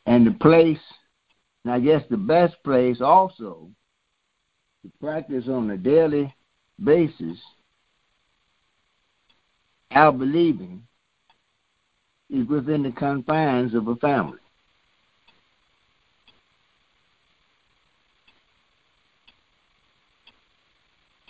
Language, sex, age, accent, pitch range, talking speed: English, male, 60-79, American, 130-170 Hz, 75 wpm